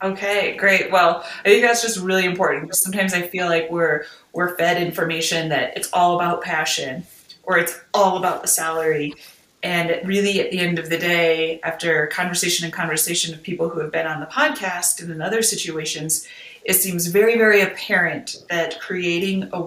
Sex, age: female, 30-49